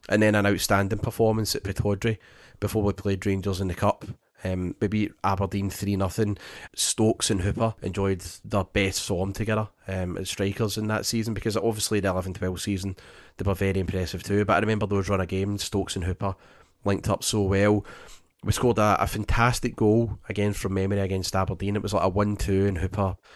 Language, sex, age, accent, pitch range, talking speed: English, male, 30-49, British, 95-110 Hz, 195 wpm